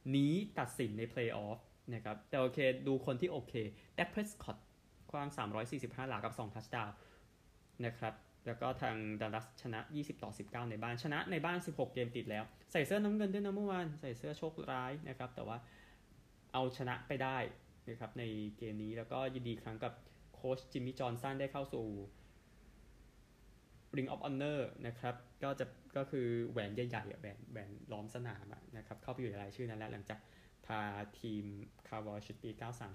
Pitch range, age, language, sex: 110-130 Hz, 20-39, Thai, male